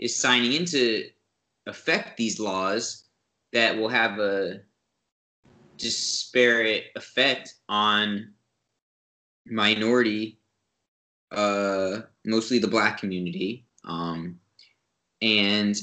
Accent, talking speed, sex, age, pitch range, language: American, 85 wpm, male, 20-39, 100-120 Hz, English